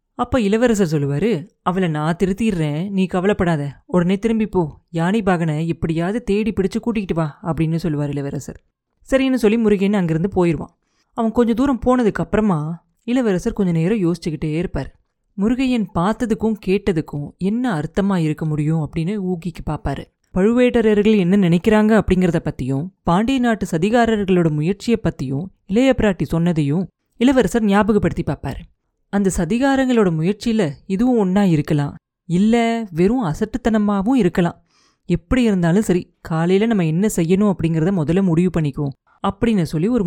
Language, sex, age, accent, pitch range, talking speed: Tamil, female, 30-49, native, 165-215 Hz, 125 wpm